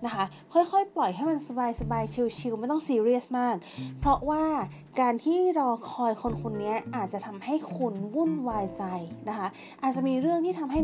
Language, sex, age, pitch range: Thai, female, 20-39, 200-270 Hz